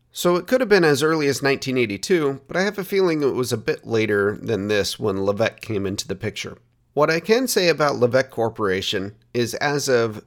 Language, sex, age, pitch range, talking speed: English, male, 30-49, 110-145 Hz, 215 wpm